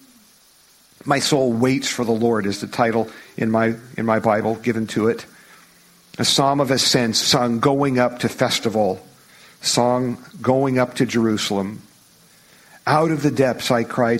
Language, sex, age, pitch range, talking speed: English, male, 50-69, 115-145 Hz, 155 wpm